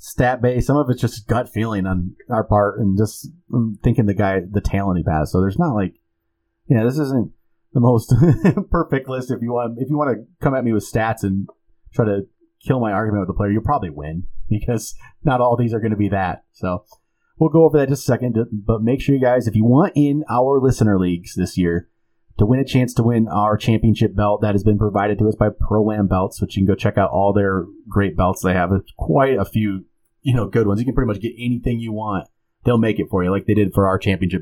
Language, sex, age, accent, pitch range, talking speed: English, male, 30-49, American, 100-125 Hz, 250 wpm